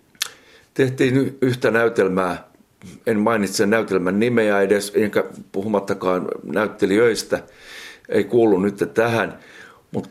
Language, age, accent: Finnish, 60-79, native